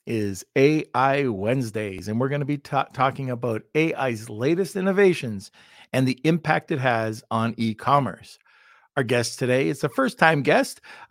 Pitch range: 115-150 Hz